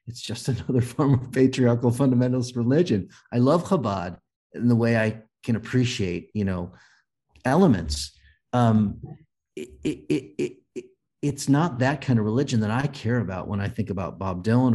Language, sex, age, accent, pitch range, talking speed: English, male, 50-69, American, 105-130 Hz, 150 wpm